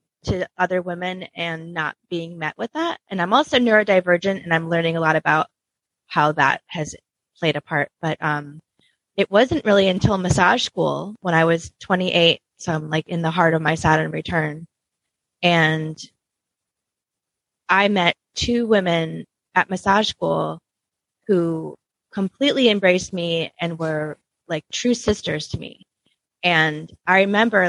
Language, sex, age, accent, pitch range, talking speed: English, female, 20-39, American, 160-190 Hz, 150 wpm